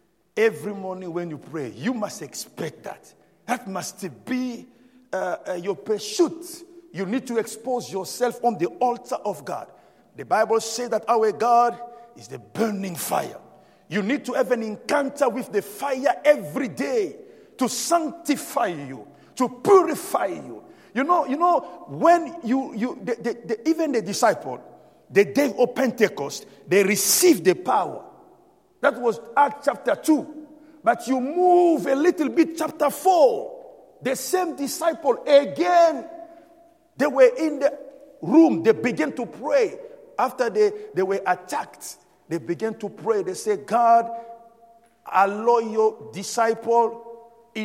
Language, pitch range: English, 215-310 Hz